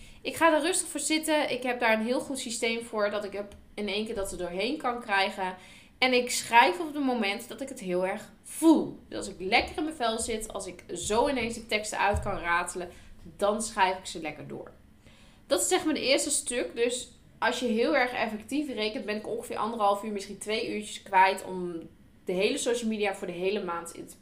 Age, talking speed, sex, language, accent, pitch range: 10-29, 230 wpm, female, Dutch, Dutch, 195-250 Hz